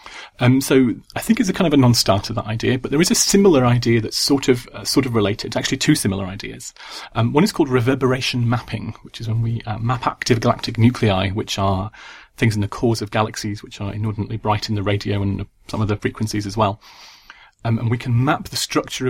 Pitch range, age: 105-125 Hz, 30-49